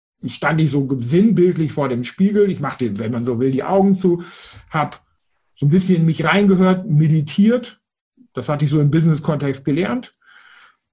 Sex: male